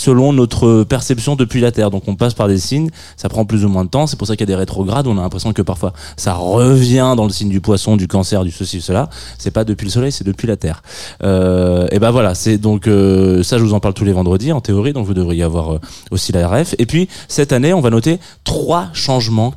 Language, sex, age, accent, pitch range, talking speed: French, male, 20-39, French, 100-135 Hz, 265 wpm